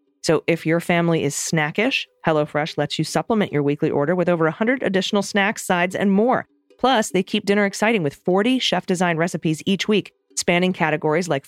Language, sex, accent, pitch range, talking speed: English, female, American, 145-190 Hz, 190 wpm